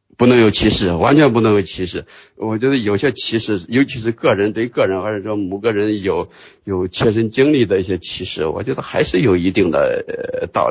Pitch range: 95-115 Hz